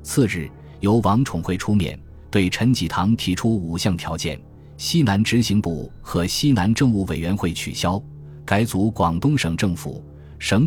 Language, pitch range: Chinese, 85-115 Hz